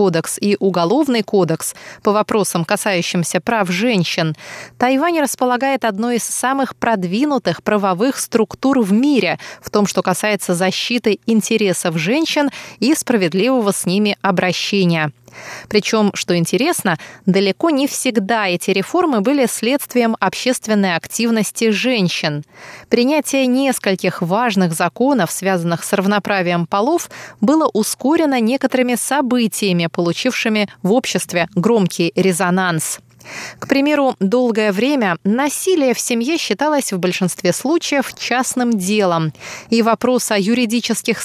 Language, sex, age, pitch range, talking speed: Russian, female, 20-39, 185-245 Hz, 115 wpm